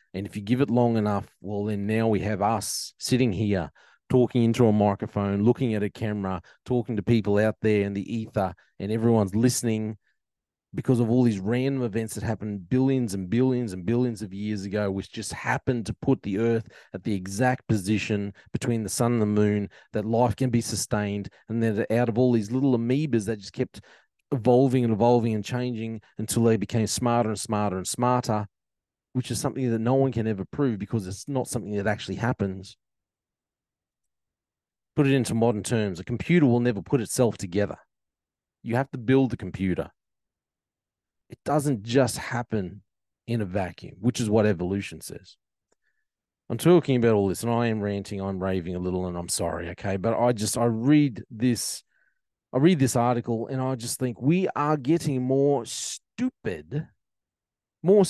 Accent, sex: Australian, male